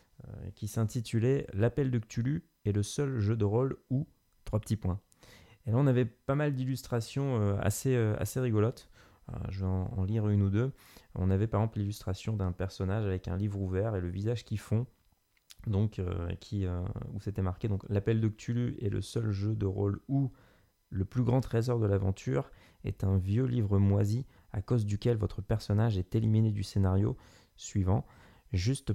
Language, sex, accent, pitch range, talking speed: French, male, French, 100-120 Hz, 195 wpm